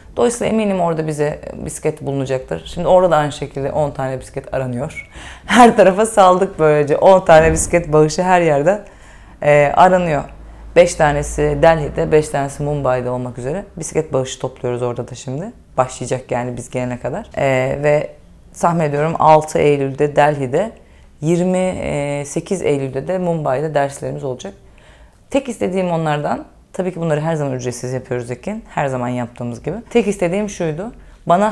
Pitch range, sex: 145-185 Hz, female